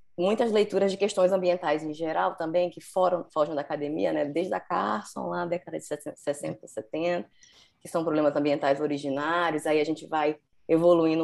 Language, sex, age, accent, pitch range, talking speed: Portuguese, female, 20-39, Brazilian, 150-175 Hz, 170 wpm